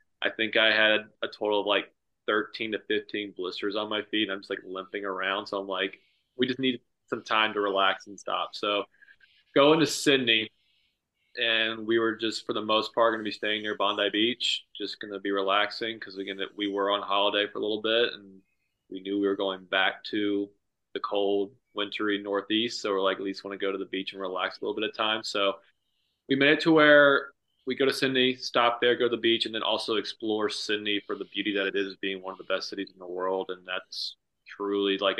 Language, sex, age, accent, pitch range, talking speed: English, male, 20-39, American, 100-115 Hz, 235 wpm